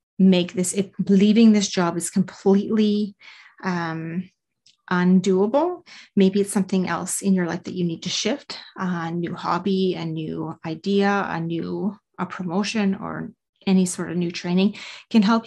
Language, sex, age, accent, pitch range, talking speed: English, female, 30-49, American, 180-210 Hz, 155 wpm